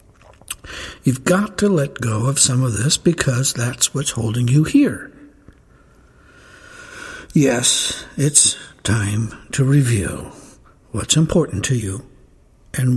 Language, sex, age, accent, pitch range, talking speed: English, male, 60-79, American, 120-165 Hz, 115 wpm